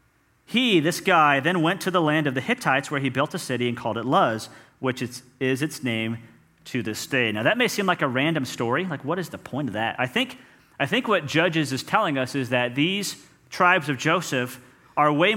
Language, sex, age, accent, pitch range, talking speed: English, male, 40-59, American, 130-190 Hz, 225 wpm